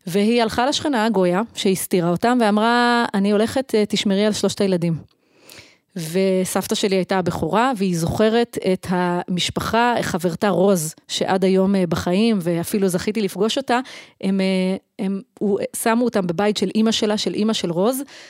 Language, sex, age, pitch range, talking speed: Hebrew, female, 30-49, 185-225 Hz, 145 wpm